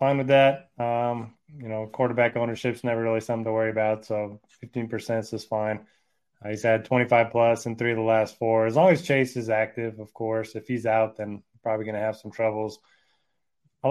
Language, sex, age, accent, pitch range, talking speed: English, male, 20-39, American, 115-130 Hz, 205 wpm